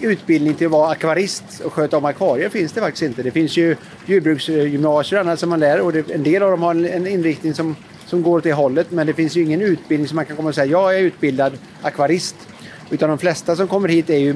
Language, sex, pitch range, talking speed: Swedish, male, 145-170 Hz, 245 wpm